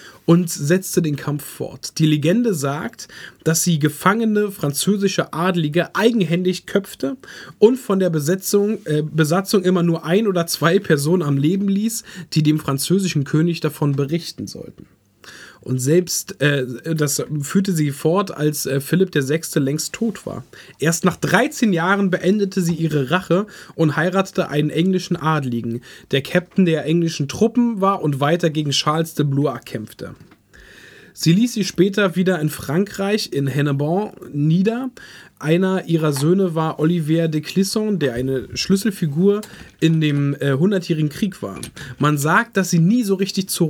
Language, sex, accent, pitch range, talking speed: German, male, German, 145-190 Hz, 150 wpm